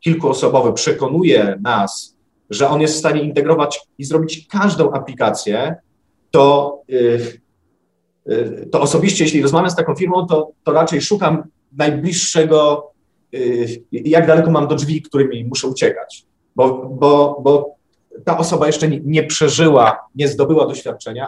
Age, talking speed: 30-49, 125 wpm